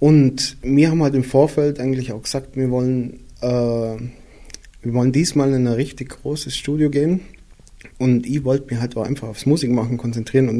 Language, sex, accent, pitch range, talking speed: German, male, German, 120-145 Hz, 180 wpm